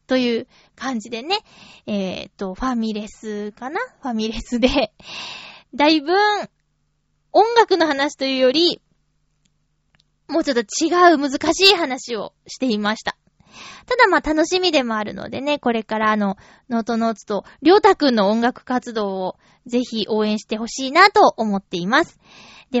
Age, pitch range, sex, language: 20-39, 225-330 Hz, female, Japanese